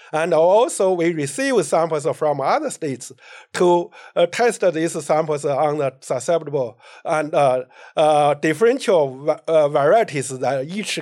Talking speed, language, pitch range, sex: 135 wpm, English, 140-180 Hz, male